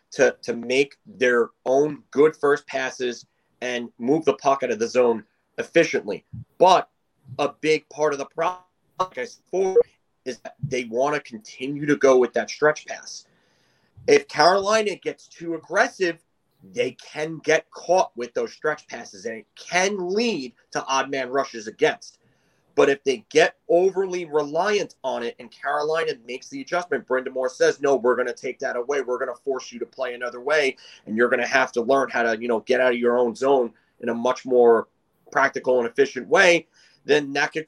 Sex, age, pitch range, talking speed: male, 30-49, 125-180 Hz, 185 wpm